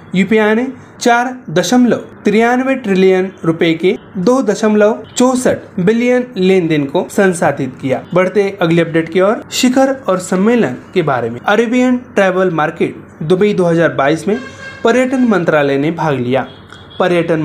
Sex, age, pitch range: male, 30-49, 165-225 Hz